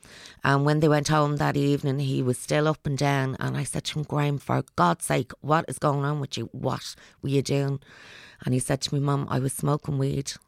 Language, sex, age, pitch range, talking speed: English, female, 30-49, 130-145 Hz, 240 wpm